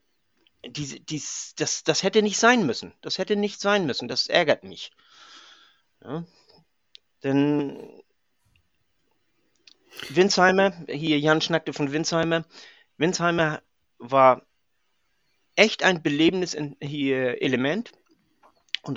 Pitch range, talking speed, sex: 140-175 Hz, 100 wpm, male